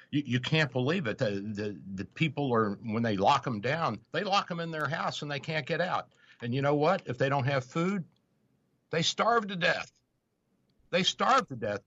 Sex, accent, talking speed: male, American, 215 wpm